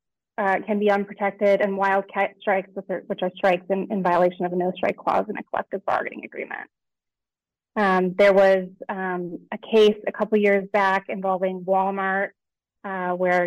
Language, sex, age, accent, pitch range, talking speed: English, female, 20-39, American, 185-205 Hz, 175 wpm